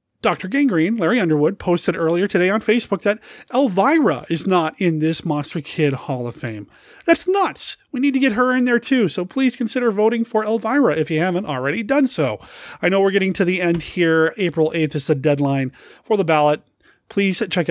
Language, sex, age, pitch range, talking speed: English, male, 30-49, 150-210 Hz, 205 wpm